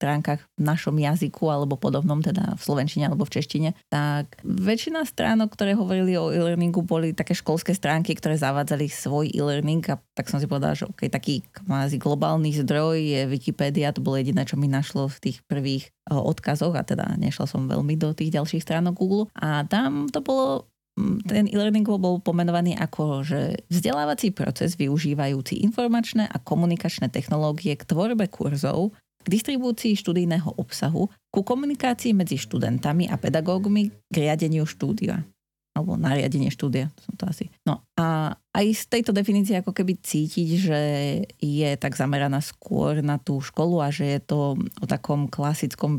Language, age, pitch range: Slovak, 30-49, 145-190 Hz